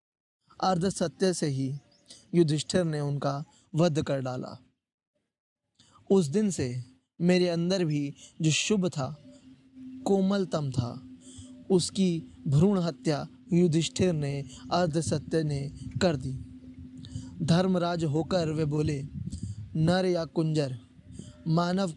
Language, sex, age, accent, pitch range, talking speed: Hindi, male, 20-39, native, 135-180 Hz, 105 wpm